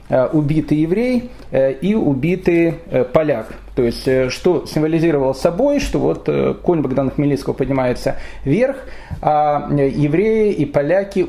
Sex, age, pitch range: male, 30-49, 145-195 Hz